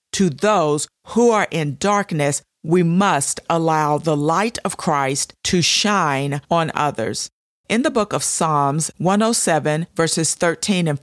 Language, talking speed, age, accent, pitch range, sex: English, 140 wpm, 50-69, American, 150-190 Hz, female